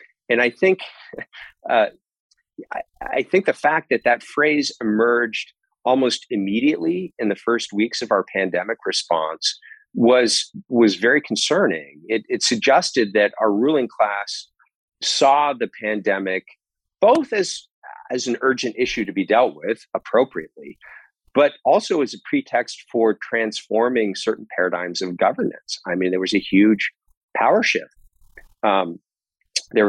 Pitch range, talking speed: 95-130 Hz, 140 wpm